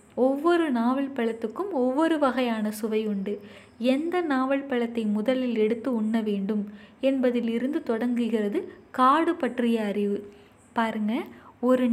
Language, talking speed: Tamil, 105 wpm